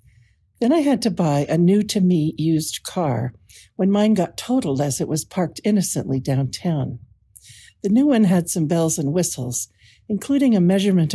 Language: English